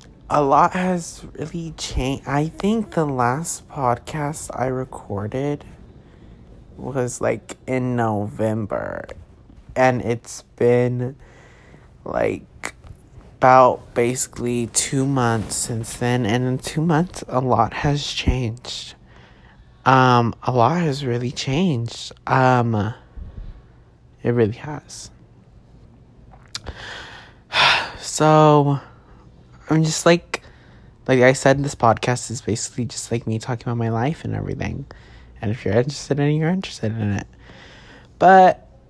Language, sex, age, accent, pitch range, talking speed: English, male, 30-49, American, 115-140 Hz, 115 wpm